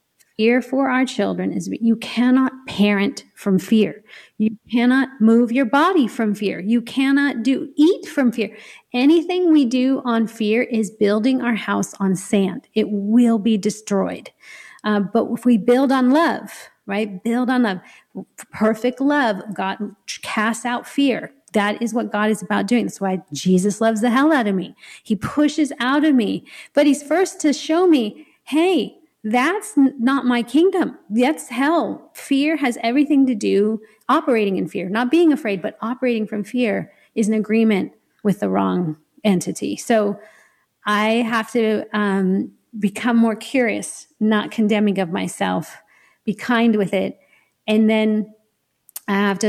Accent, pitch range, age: American, 210-260 Hz, 40-59